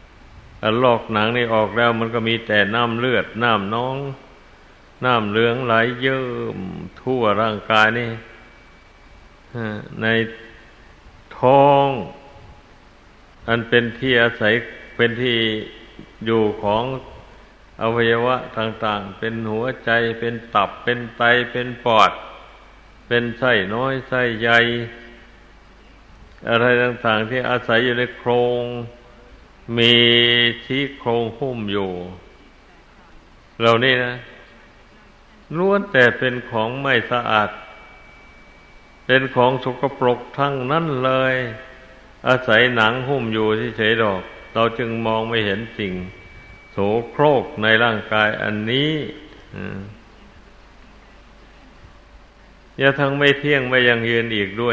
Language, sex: Thai, male